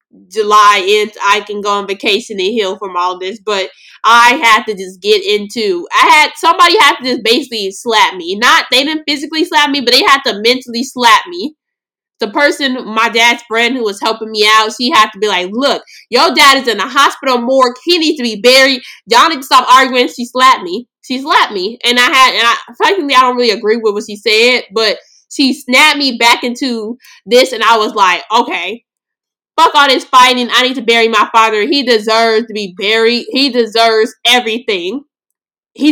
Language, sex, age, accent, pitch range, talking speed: English, female, 20-39, American, 215-285 Hz, 210 wpm